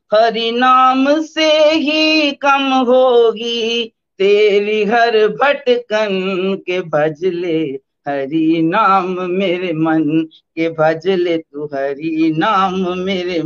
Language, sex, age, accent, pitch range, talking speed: Hindi, female, 50-69, native, 185-265 Hz, 95 wpm